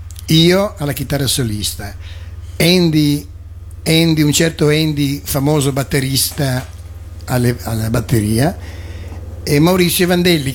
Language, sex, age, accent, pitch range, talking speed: Italian, male, 60-79, native, 105-145 Hz, 90 wpm